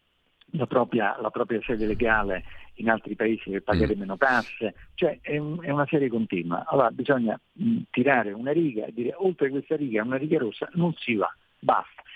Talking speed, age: 185 wpm, 50-69